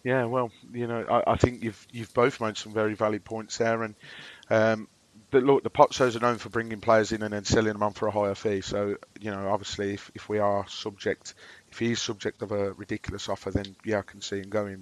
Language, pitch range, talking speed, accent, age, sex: English, 105-125 Hz, 245 wpm, British, 30-49, male